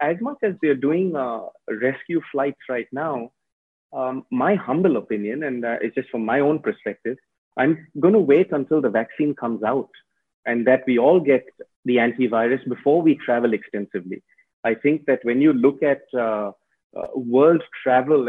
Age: 30-49